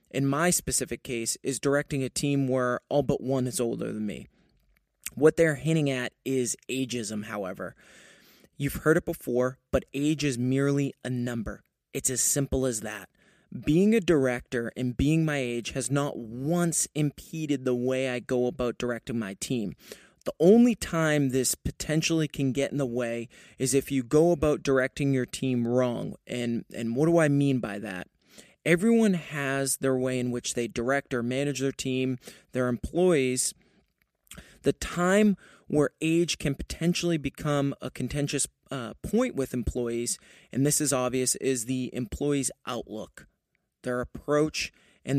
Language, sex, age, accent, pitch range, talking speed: English, male, 20-39, American, 125-150 Hz, 160 wpm